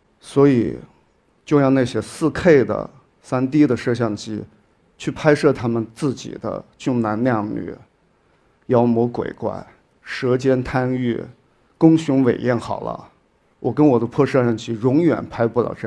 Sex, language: male, Chinese